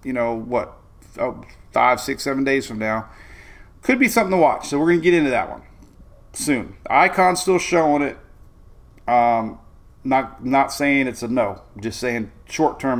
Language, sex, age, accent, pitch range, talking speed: English, male, 30-49, American, 115-180 Hz, 170 wpm